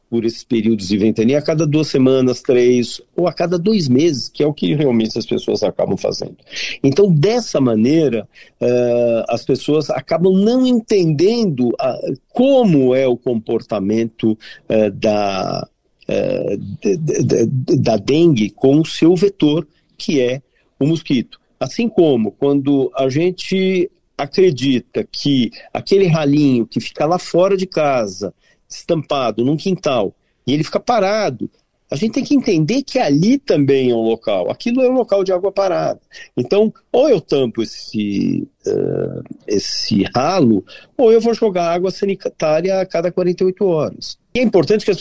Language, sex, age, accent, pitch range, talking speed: Portuguese, male, 50-69, Brazilian, 125-195 Hz, 145 wpm